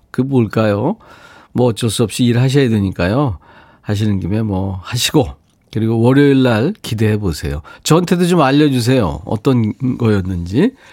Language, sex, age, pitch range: Korean, male, 40-59, 95-145 Hz